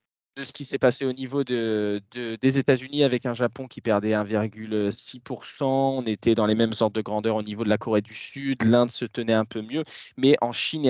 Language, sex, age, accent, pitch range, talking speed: French, male, 20-39, French, 115-140 Hz, 215 wpm